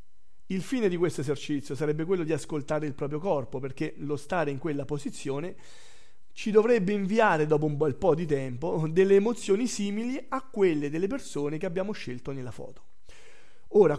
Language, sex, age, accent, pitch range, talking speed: Italian, male, 40-59, native, 150-220 Hz, 170 wpm